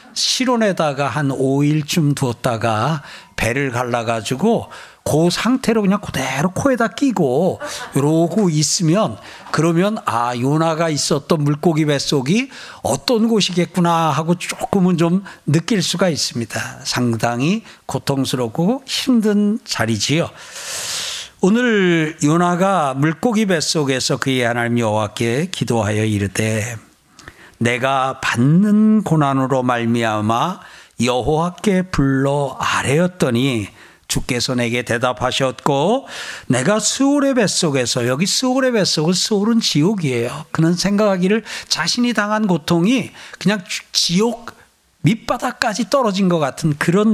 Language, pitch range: Korean, 130-200 Hz